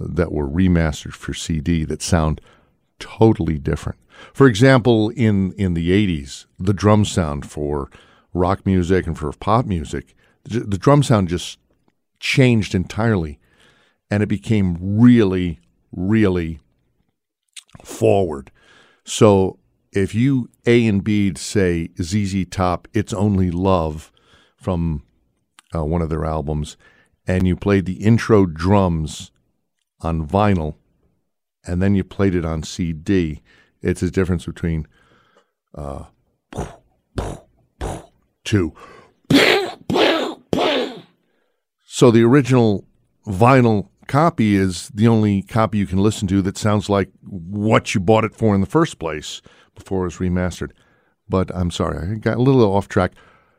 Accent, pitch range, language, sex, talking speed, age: American, 85-110 Hz, English, male, 130 wpm, 50-69